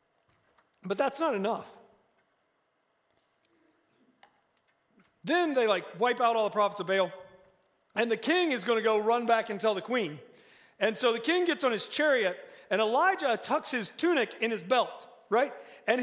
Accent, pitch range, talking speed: American, 220-300 Hz, 170 wpm